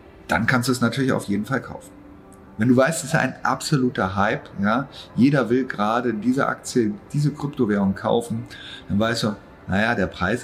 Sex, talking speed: male, 180 wpm